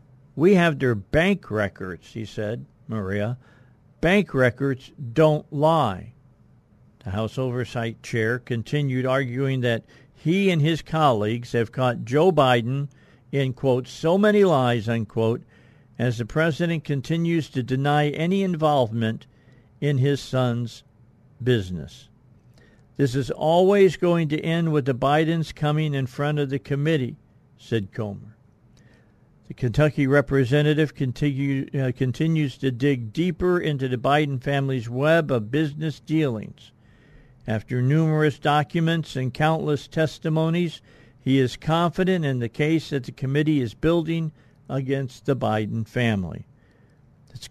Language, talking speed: English, 130 wpm